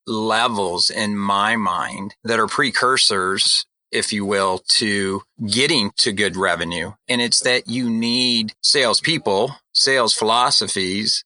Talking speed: 125 wpm